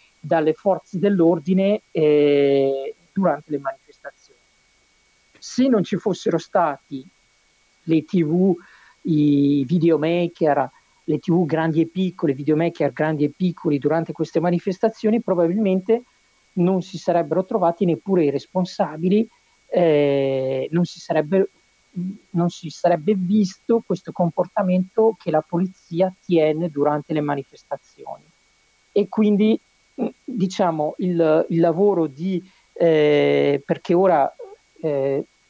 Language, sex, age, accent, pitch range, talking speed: Italian, male, 50-69, native, 145-185 Hz, 105 wpm